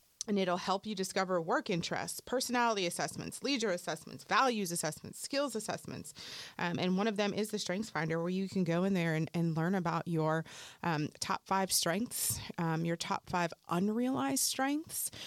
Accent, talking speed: American, 175 wpm